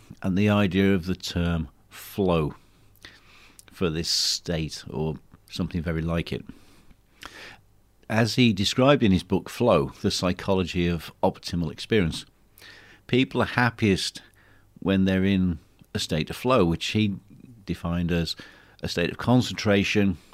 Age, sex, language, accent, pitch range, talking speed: 50-69, male, English, British, 85-105 Hz, 135 wpm